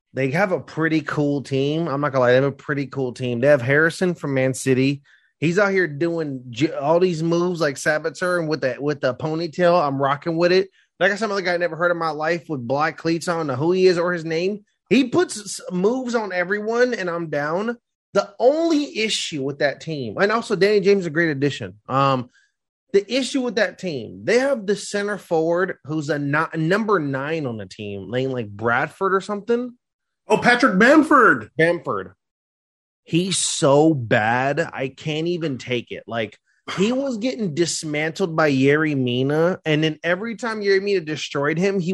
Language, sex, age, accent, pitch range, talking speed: English, male, 30-49, American, 145-195 Hz, 200 wpm